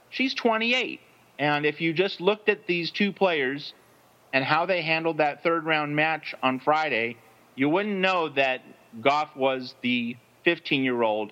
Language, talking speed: English, 150 wpm